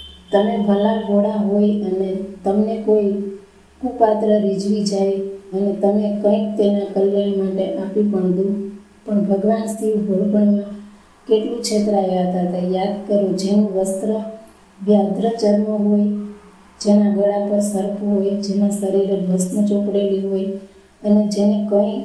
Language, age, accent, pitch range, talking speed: Gujarati, 20-39, native, 195-210 Hz, 70 wpm